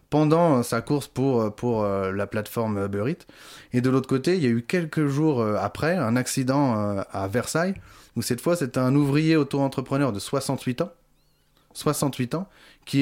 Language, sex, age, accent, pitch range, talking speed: French, male, 20-39, French, 115-135 Hz, 165 wpm